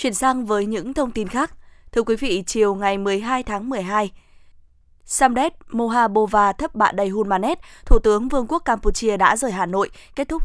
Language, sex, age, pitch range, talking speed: Vietnamese, female, 20-39, 195-245 Hz, 195 wpm